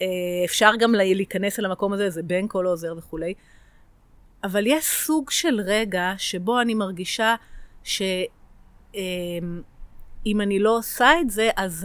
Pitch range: 175-215 Hz